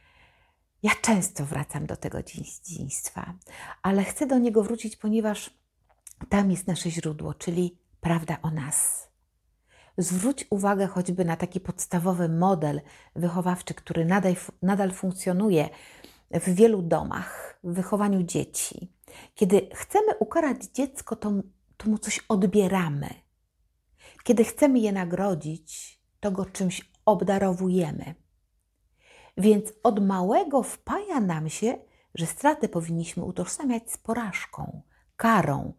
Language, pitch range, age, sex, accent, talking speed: Polish, 160-205 Hz, 50-69, female, native, 115 wpm